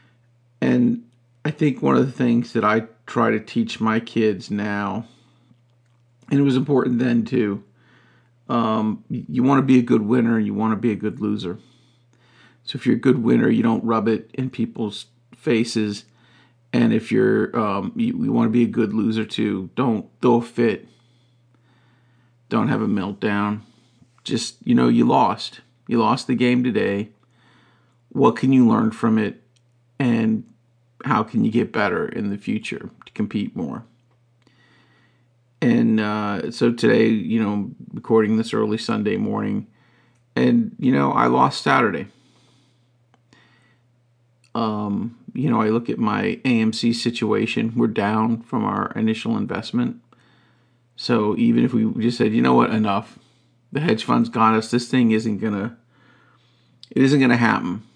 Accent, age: American, 40-59